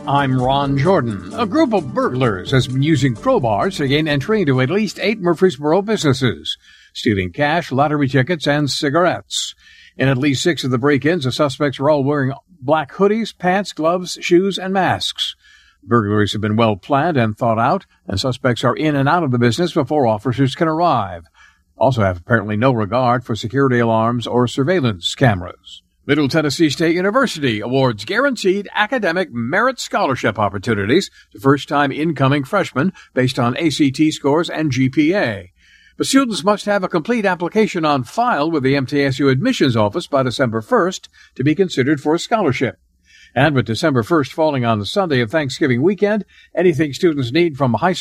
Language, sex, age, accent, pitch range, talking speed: English, male, 60-79, American, 120-170 Hz, 170 wpm